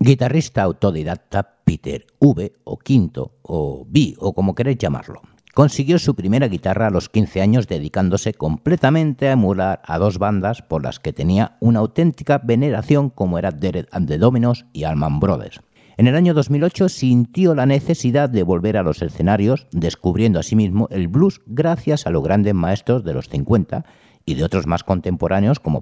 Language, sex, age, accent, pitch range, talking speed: Spanish, male, 60-79, Spanish, 95-140 Hz, 175 wpm